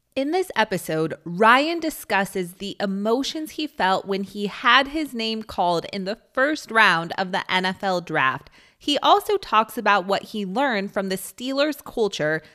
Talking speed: 165 wpm